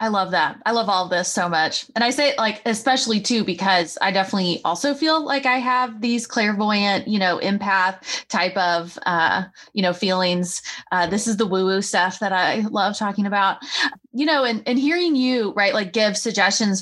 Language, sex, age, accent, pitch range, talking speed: English, female, 20-39, American, 195-250 Hz, 205 wpm